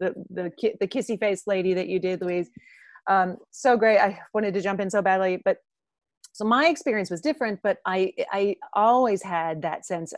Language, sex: English, female